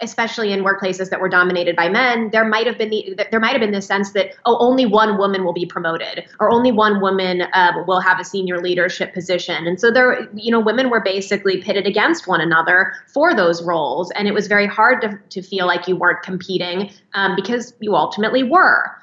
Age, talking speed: 20-39, 220 wpm